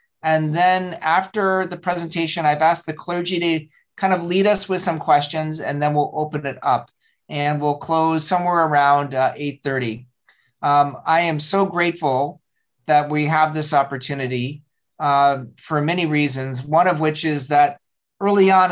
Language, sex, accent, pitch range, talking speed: English, male, American, 140-165 Hz, 165 wpm